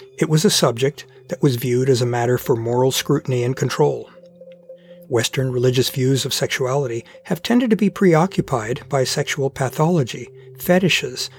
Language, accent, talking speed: English, American, 155 wpm